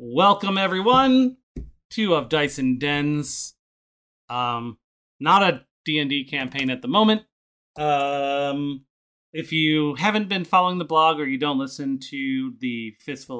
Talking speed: 135 wpm